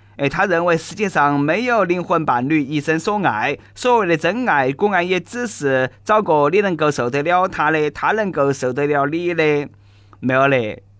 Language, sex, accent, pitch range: Chinese, male, native, 145-210 Hz